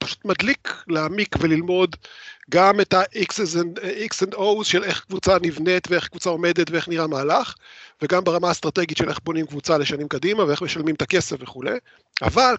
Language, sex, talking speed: Hebrew, male, 160 wpm